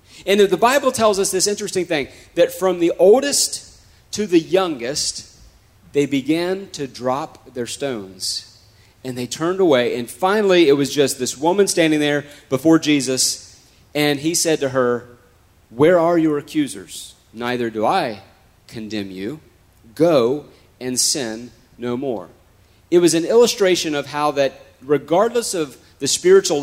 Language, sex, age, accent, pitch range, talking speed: English, male, 40-59, American, 125-170 Hz, 150 wpm